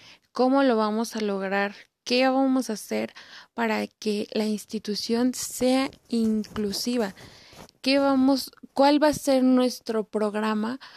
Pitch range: 210-230 Hz